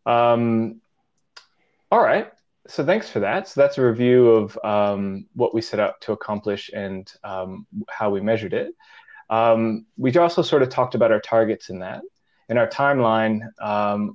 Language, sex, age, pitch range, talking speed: English, male, 20-39, 105-125 Hz, 165 wpm